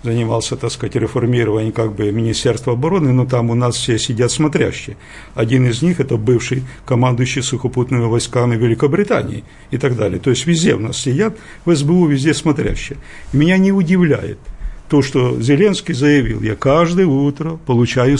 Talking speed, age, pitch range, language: 160 wpm, 50-69, 125-165 Hz, Russian